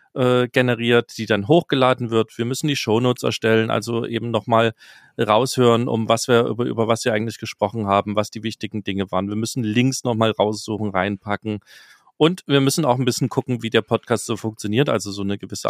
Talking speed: 195 wpm